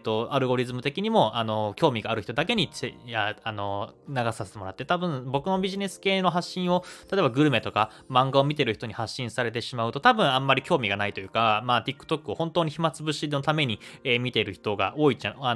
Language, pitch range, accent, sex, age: Japanese, 110-165 Hz, native, male, 20-39